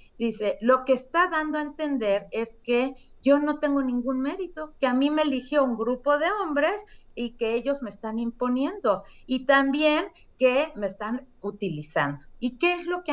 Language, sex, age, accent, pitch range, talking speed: Spanish, female, 40-59, Mexican, 200-285 Hz, 185 wpm